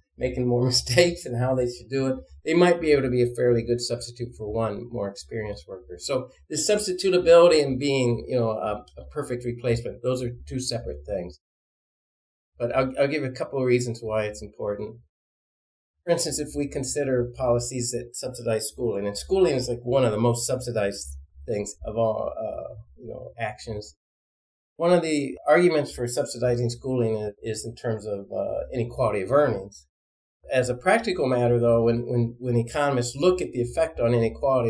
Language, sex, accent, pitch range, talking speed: English, male, American, 110-140 Hz, 180 wpm